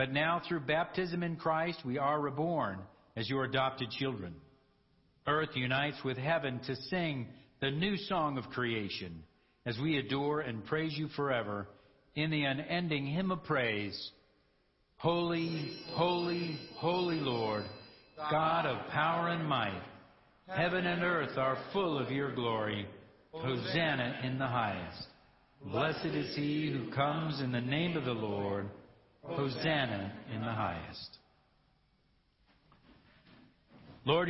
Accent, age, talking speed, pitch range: American, 60-79, 130 wpm, 115-160 Hz